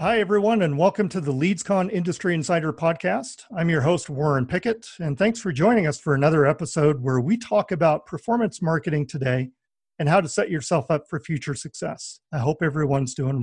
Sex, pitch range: male, 145-185 Hz